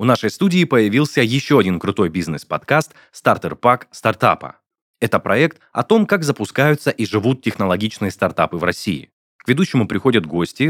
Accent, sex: native, male